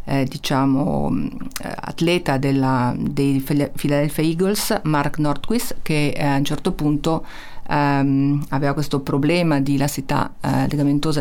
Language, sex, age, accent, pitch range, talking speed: Italian, female, 50-69, native, 135-150 Hz, 105 wpm